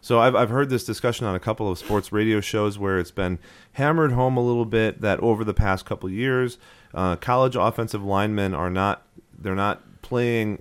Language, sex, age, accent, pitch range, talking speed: English, male, 30-49, American, 90-115 Hz, 215 wpm